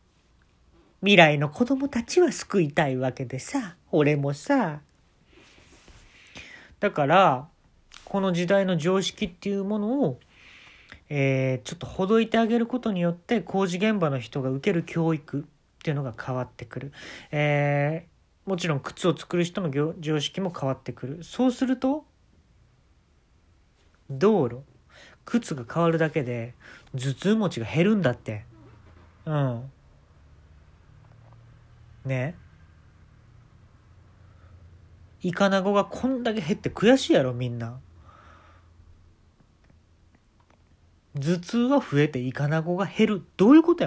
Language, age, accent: Japanese, 40-59, native